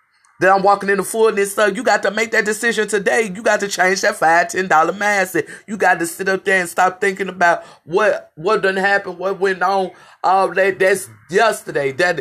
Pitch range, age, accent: 155-200 Hz, 30-49, American